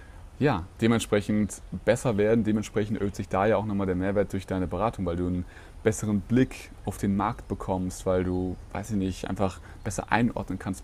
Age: 30-49